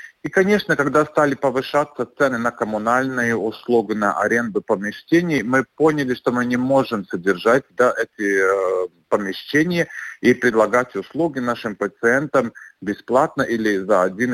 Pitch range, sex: 110-145 Hz, male